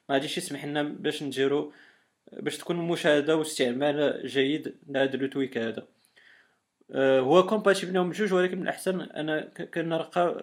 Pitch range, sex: 135-155 Hz, male